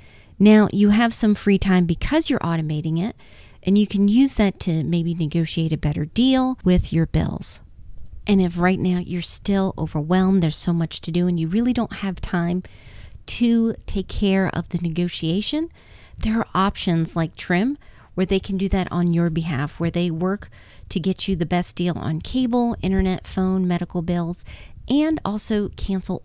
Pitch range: 170-200 Hz